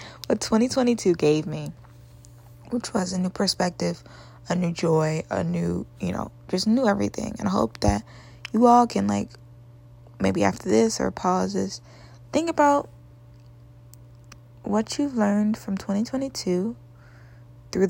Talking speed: 135 wpm